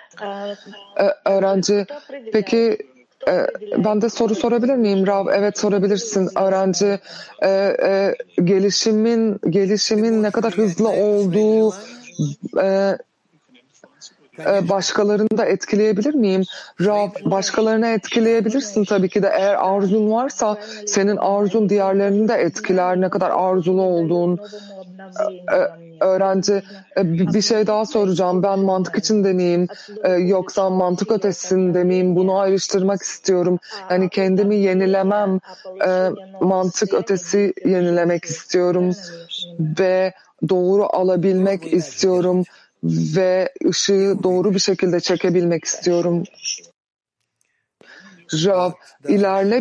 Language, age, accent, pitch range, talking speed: Turkish, 40-59, native, 185-210 Hz, 95 wpm